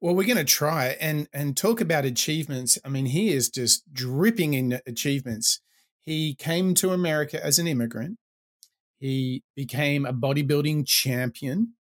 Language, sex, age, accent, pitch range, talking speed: English, male, 30-49, Australian, 130-180 Hz, 150 wpm